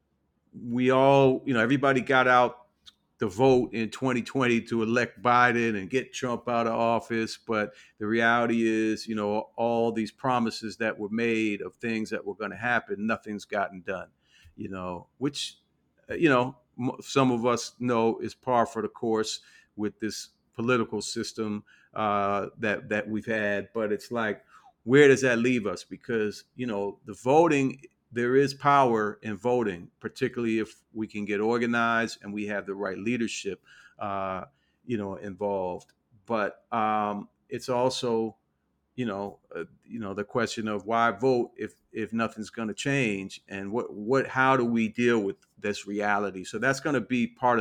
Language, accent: English, American